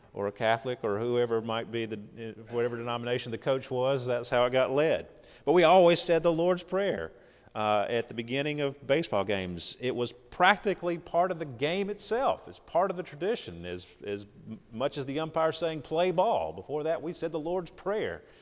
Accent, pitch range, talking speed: American, 100-135 Hz, 200 wpm